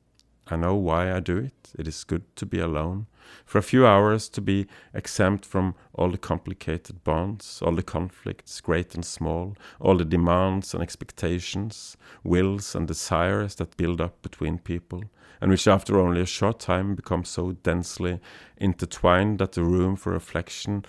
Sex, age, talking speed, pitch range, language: male, 40-59, 170 wpm, 85-105 Hz, English